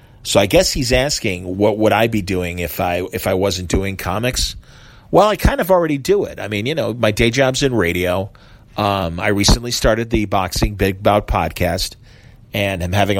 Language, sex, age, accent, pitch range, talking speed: English, male, 40-59, American, 95-120 Hz, 205 wpm